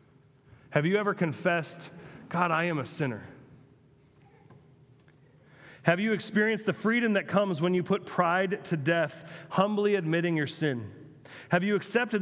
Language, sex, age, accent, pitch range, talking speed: English, male, 40-59, American, 145-195 Hz, 140 wpm